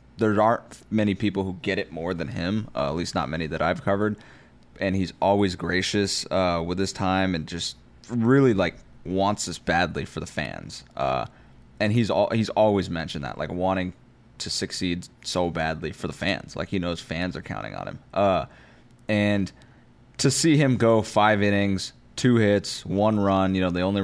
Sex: male